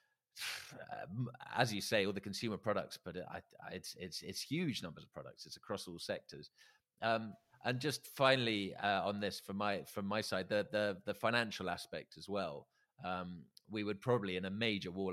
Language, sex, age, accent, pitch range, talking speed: English, male, 30-49, British, 90-115 Hz, 190 wpm